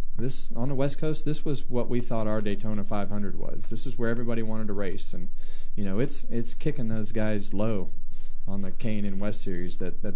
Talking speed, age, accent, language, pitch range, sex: 235 wpm, 30-49, American, English, 95-110 Hz, male